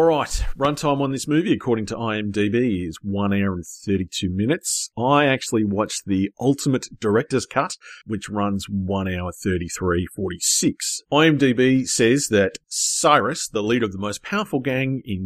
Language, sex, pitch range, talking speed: English, male, 100-150 Hz, 155 wpm